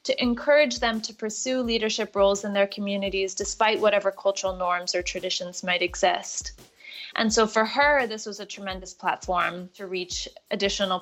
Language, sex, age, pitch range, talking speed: English, female, 20-39, 180-220 Hz, 165 wpm